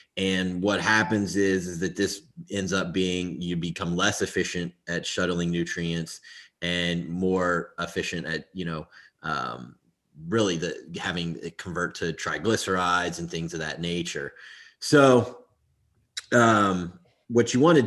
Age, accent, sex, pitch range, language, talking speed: 30-49, American, male, 85-100 Hz, English, 140 wpm